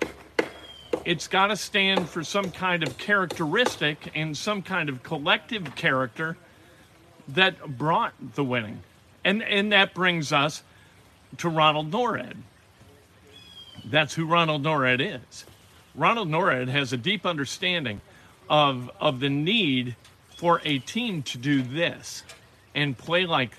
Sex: male